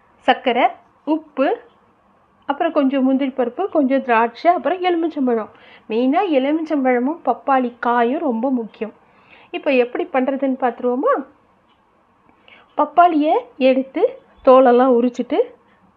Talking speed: 85 wpm